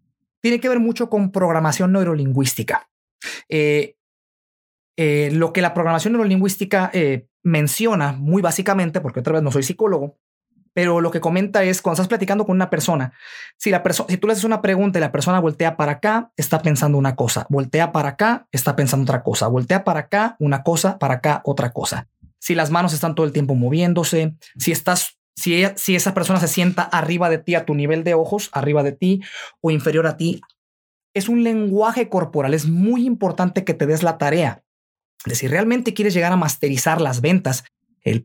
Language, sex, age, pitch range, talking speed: Spanish, male, 30-49, 145-185 Hz, 195 wpm